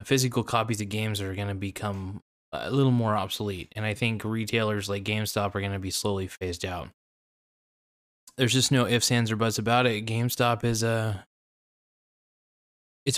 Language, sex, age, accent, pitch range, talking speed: English, male, 20-39, American, 100-120 Hz, 175 wpm